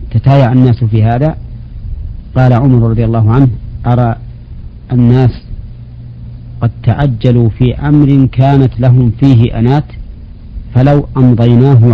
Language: Arabic